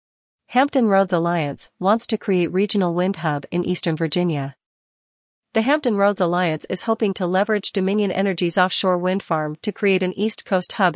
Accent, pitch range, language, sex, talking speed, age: American, 170-205 Hz, English, female, 170 wpm, 40-59